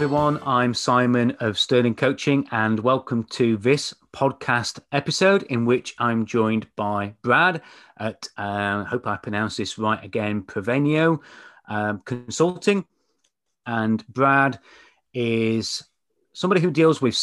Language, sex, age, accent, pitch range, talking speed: English, male, 30-49, British, 110-135 Hz, 130 wpm